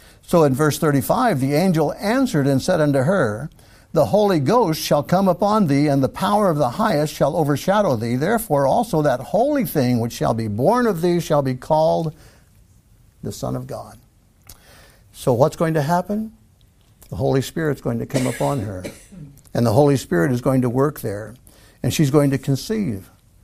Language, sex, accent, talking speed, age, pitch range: English, male, American, 185 wpm, 60-79, 110-155 Hz